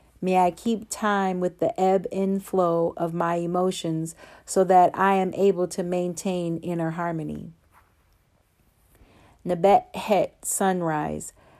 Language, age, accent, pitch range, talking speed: English, 40-59, American, 165-190 Hz, 120 wpm